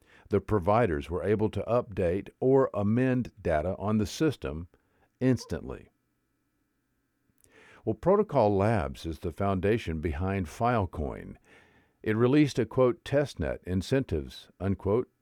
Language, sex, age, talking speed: English, male, 50-69, 110 wpm